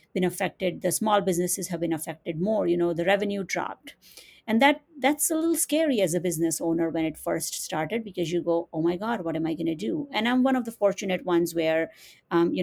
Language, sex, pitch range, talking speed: English, female, 175-225 Hz, 240 wpm